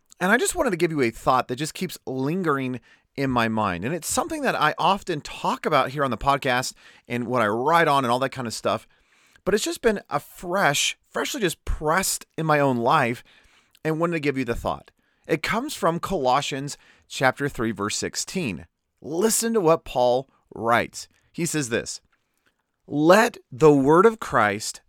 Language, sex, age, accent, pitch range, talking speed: English, male, 30-49, American, 120-175 Hz, 195 wpm